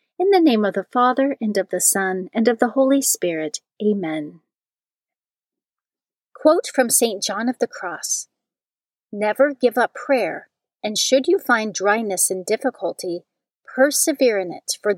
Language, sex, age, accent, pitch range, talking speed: English, female, 40-59, American, 195-260 Hz, 150 wpm